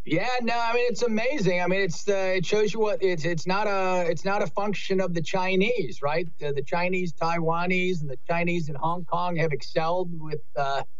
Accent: American